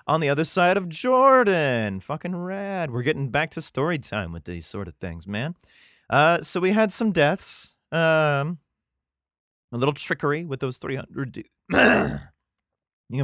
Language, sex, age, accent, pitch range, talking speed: English, male, 30-49, American, 110-165 Hz, 155 wpm